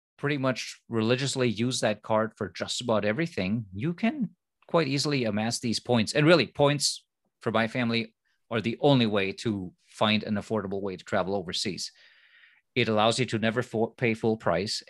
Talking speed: 175 wpm